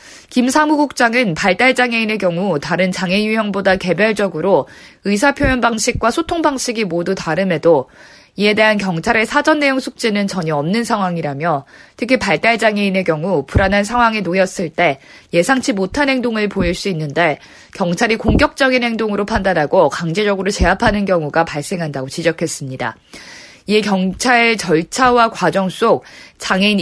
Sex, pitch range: female, 175-235 Hz